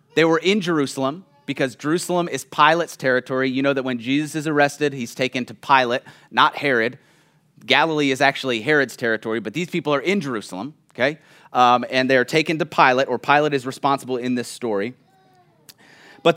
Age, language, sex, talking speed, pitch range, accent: 30-49, English, male, 175 wpm, 135-170 Hz, American